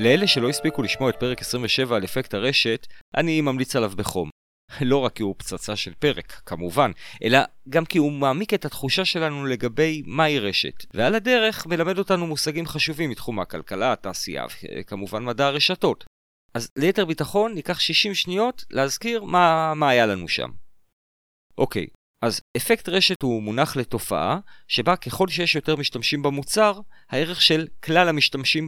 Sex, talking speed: male, 155 wpm